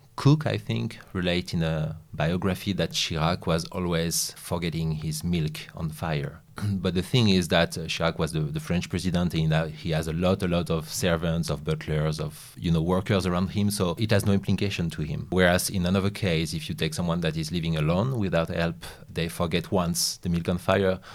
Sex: male